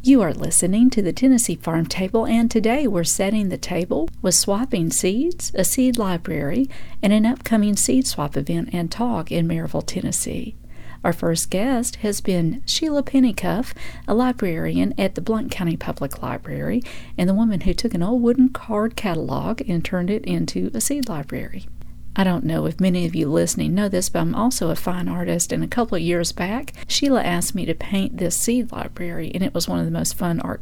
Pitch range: 170-235 Hz